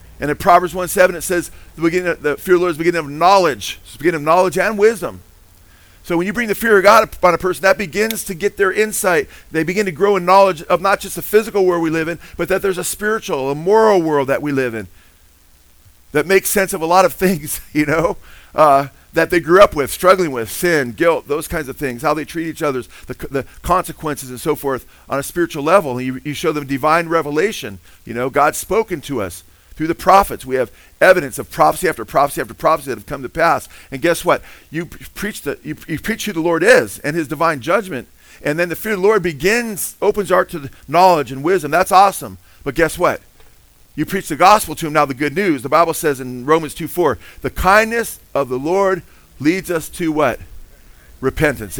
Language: English